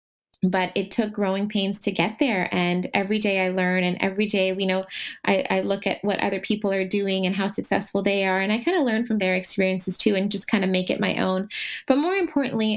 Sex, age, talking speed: female, 20-39, 245 wpm